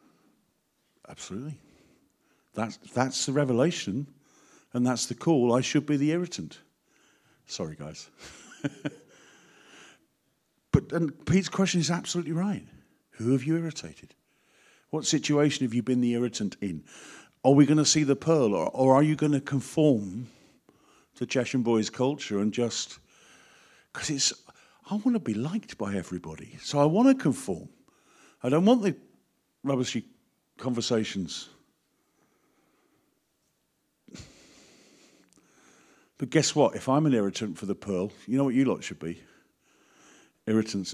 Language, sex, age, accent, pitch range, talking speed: English, male, 50-69, British, 120-155 Hz, 135 wpm